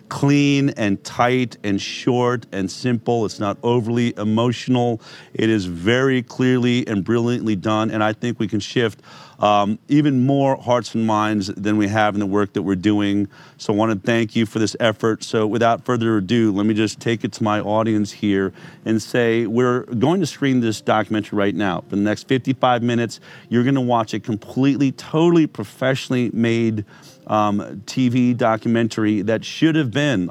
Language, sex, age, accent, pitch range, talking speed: English, male, 40-59, American, 105-135 Hz, 180 wpm